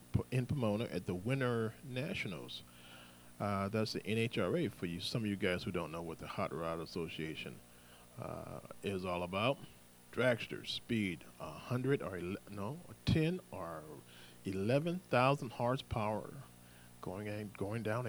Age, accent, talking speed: 40-59, American, 140 wpm